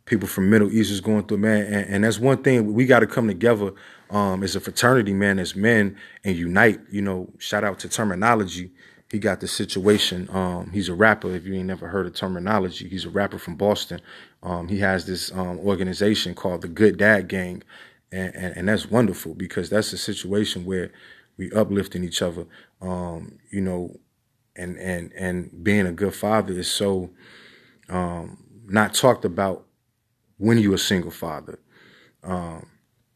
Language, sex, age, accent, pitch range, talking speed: English, male, 20-39, American, 90-110 Hz, 180 wpm